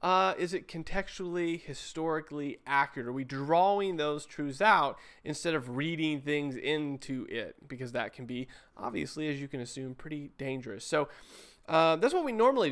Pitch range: 135-185 Hz